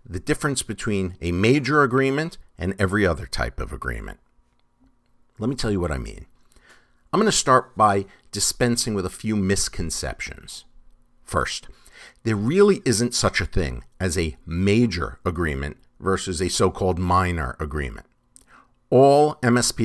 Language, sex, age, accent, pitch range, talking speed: English, male, 50-69, American, 90-130 Hz, 140 wpm